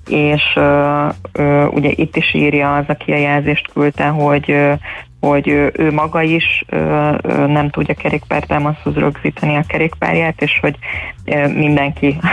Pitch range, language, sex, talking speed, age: 140-150 Hz, Hungarian, female, 135 wpm, 20-39